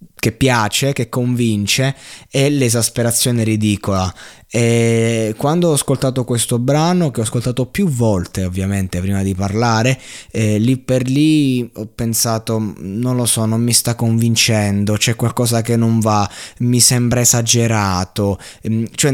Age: 20-39